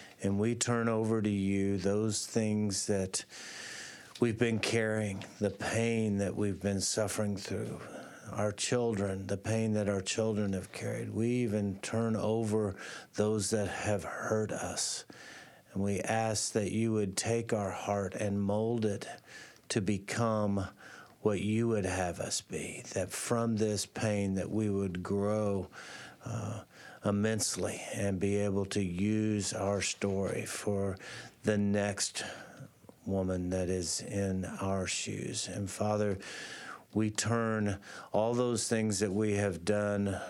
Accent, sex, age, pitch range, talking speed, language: American, male, 50-69, 100-110 Hz, 140 wpm, English